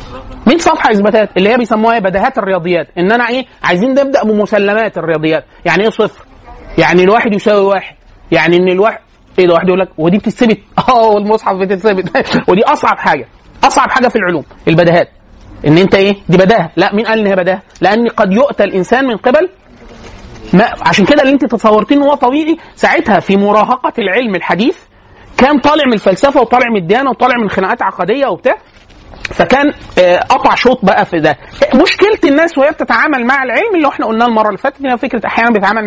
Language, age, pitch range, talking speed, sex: Arabic, 30-49, 190-255 Hz, 175 wpm, male